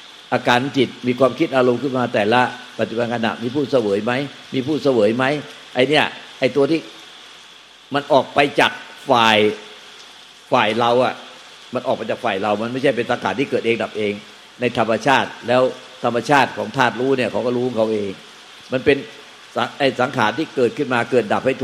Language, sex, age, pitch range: Thai, male, 60-79, 115-135 Hz